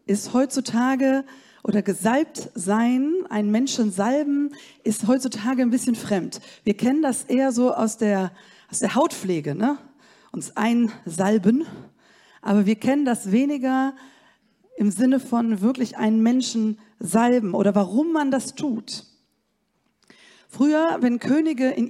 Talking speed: 130 wpm